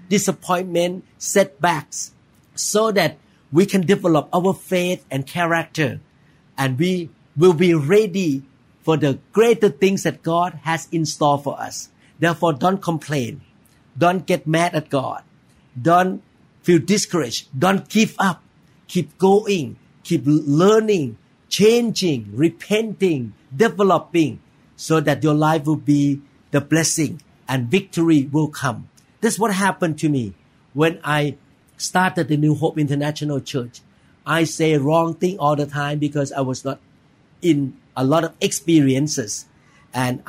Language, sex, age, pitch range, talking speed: English, male, 50-69, 140-175 Hz, 135 wpm